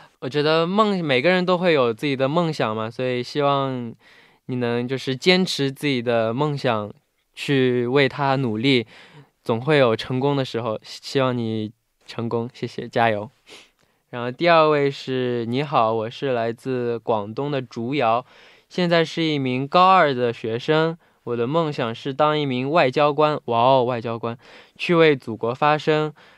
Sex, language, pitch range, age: male, Korean, 120-150 Hz, 10-29